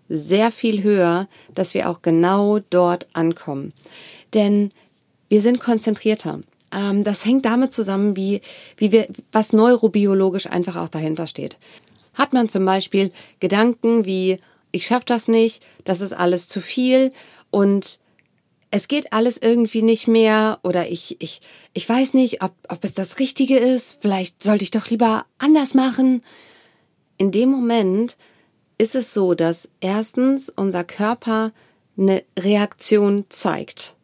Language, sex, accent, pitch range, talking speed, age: German, female, German, 185-230 Hz, 140 wpm, 40-59